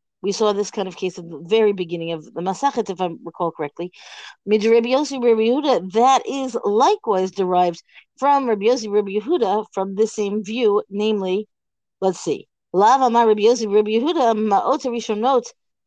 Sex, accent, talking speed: female, American, 120 wpm